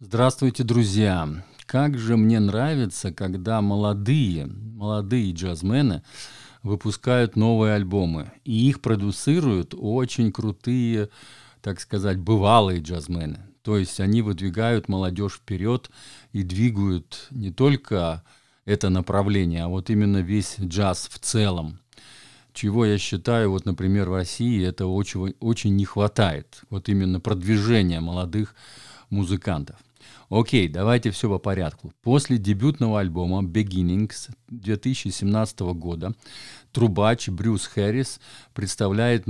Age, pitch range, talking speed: 50-69, 95-120 Hz, 110 wpm